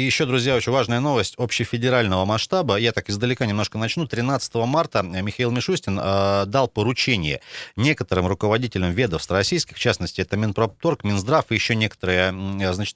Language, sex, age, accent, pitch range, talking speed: Russian, male, 30-49, native, 100-130 Hz, 150 wpm